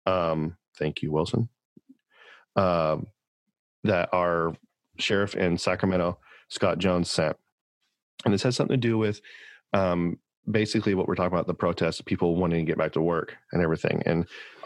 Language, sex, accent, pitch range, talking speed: English, male, American, 85-105 Hz, 160 wpm